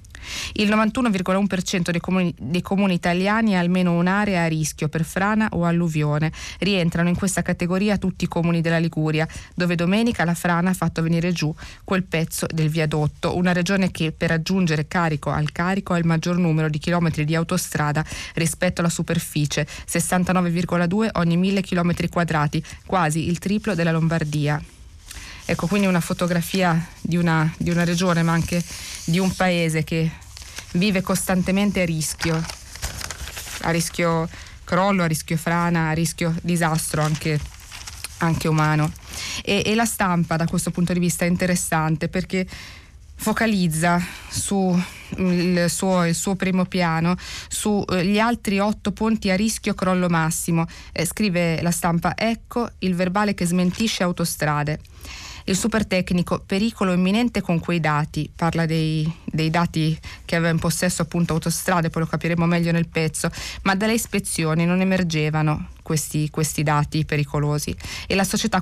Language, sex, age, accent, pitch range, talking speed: Italian, female, 20-39, native, 160-185 Hz, 145 wpm